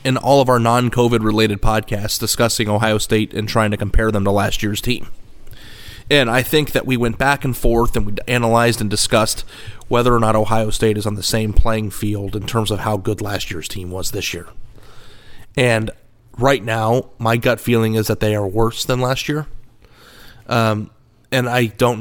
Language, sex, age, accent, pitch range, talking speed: English, male, 30-49, American, 110-120 Hz, 195 wpm